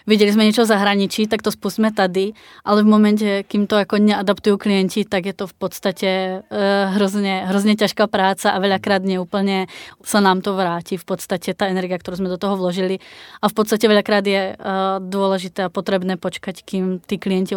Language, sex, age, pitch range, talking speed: Czech, female, 20-39, 185-200 Hz, 190 wpm